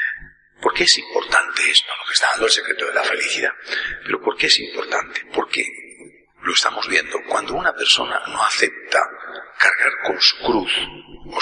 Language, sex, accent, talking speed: Spanish, male, Spanish, 170 wpm